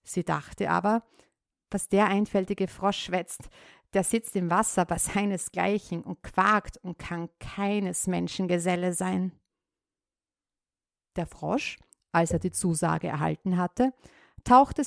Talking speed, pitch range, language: 120 wpm, 180-235 Hz, German